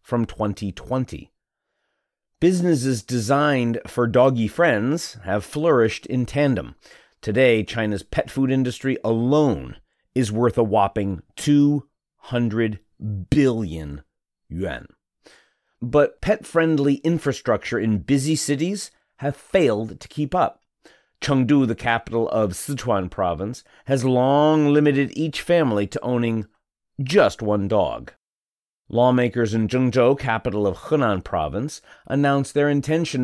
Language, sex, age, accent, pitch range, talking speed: English, male, 40-59, American, 105-140 Hz, 110 wpm